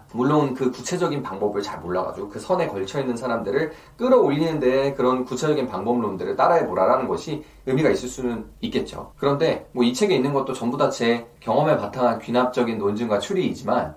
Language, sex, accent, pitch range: Korean, male, native, 125-175 Hz